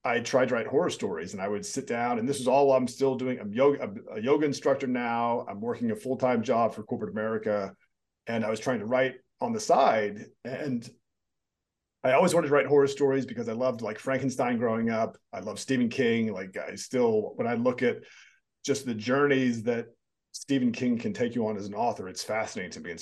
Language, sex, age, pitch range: English, male, 40-59, 115-145 Hz